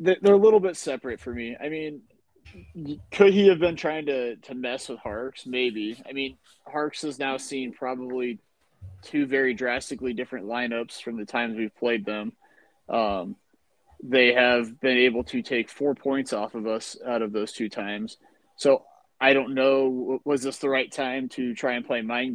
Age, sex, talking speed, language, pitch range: 20-39, male, 185 wpm, English, 120-145 Hz